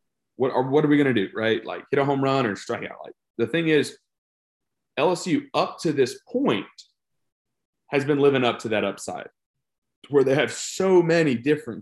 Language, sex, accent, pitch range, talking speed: English, male, American, 105-130 Hz, 200 wpm